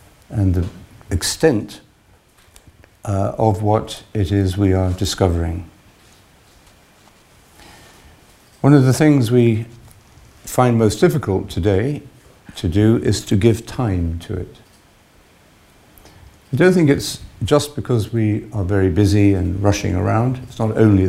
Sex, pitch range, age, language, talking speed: male, 95-115 Hz, 50-69, English, 125 wpm